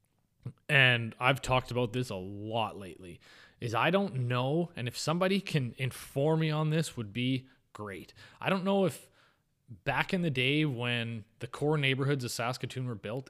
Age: 20-39